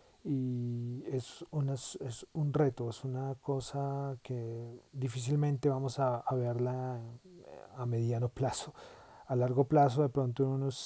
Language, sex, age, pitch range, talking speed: Spanish, male, 40-59, 120-140 Hz, 140 wpm